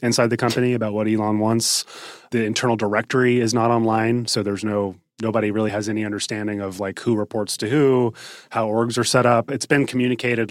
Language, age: English, 30-49